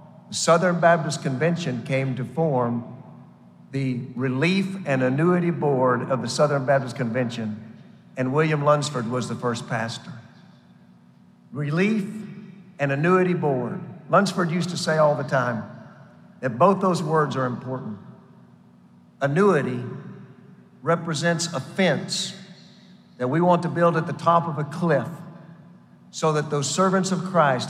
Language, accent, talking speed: English, American, 130 wpm